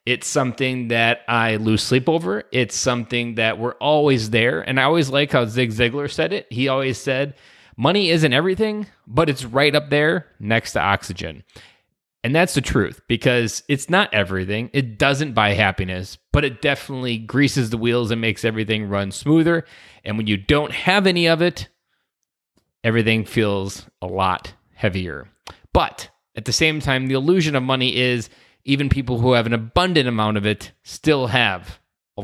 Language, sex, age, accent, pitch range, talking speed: English, male, 20-39, American, 110-135 Hz, 175 wpm